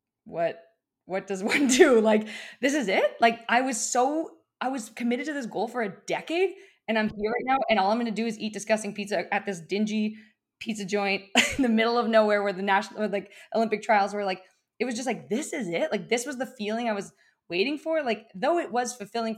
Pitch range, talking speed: 190-235 Hz, 235 wpm